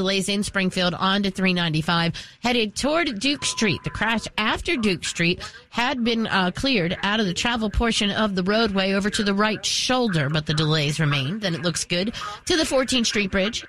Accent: American